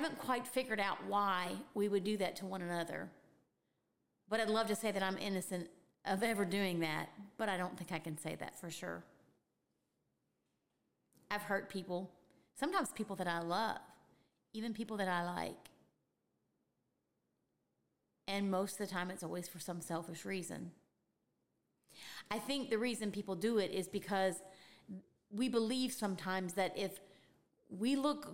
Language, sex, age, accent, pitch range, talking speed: English, female, 30-49, American, 180-225 Hz, 160 wpm